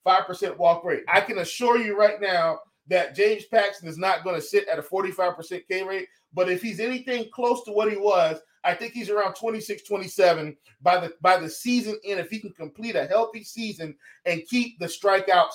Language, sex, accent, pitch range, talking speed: English, male, American, 195-235 Hz, 215 wpm